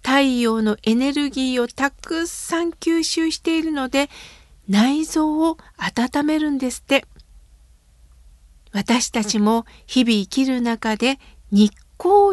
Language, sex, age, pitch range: Japanese, female, 50-69, 215-310 Hz